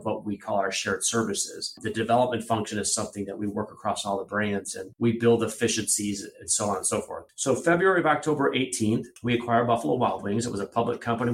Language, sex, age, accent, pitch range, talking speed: English, male, 30-49, American, 105-125 Hz, 230 wpm